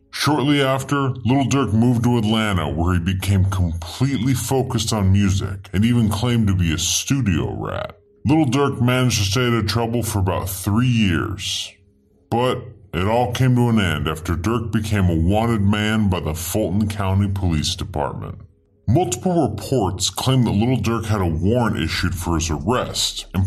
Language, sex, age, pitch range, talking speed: English, female, 40-59, 90-115 Hz, 170 wpm